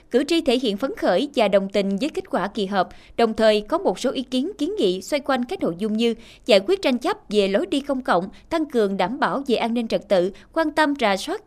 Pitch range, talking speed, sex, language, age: 205-280 Hz, 265 wpm, female, Vietnamese, 20-39